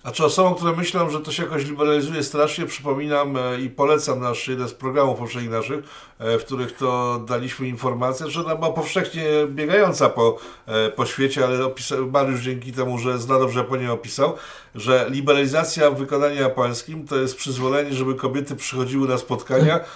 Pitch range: 130-155 Hz